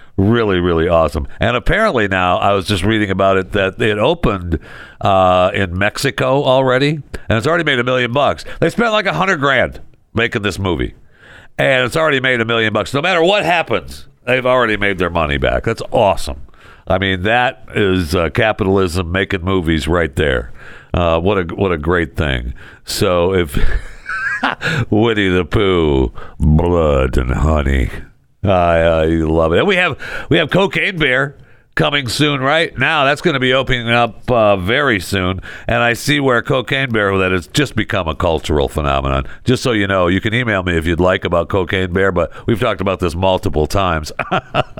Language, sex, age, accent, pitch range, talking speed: English, male, 60-79, American, 90-125 Hz, 185 wpm